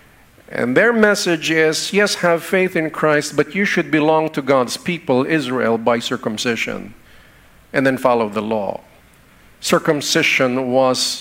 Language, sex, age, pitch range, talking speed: English, male, 50-69, 135-195 Hz, 140 wpm